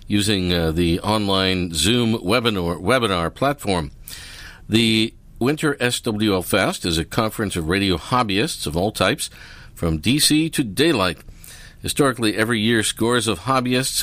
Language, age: English, 50-69